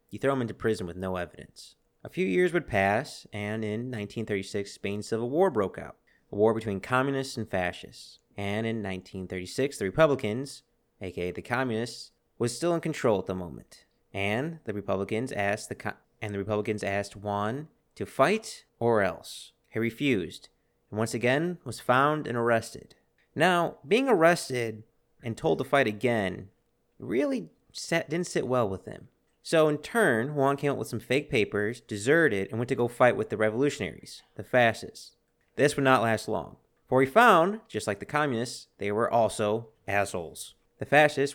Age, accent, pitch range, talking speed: 30-49, American, 105-135 Hz, 170 wpm